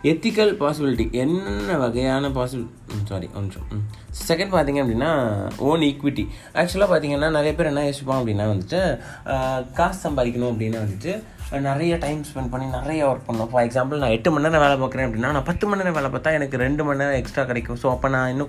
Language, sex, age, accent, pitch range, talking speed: Tamil, male, 30-49, native, 110-145 Hz, 195 wpm